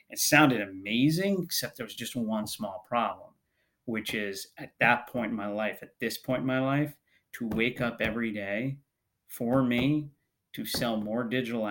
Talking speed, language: 180 wpm, English